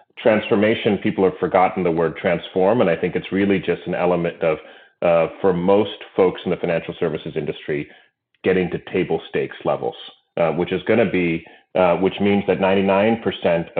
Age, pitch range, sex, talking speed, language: 30-49, 85-100 Hz, male, 180 wpm, English